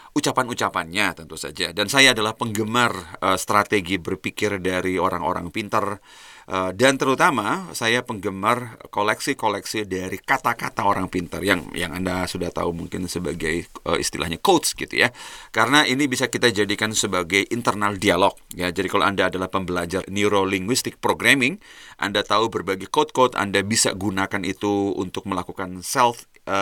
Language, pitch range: Indonesian, 95-120 Hz